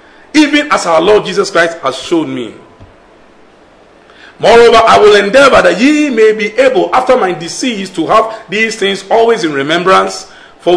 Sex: male